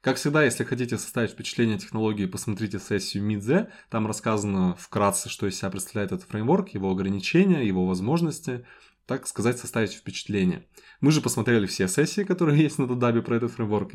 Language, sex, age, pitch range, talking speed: Russian, male, 20-39, 100-125 Hz, 170 wpm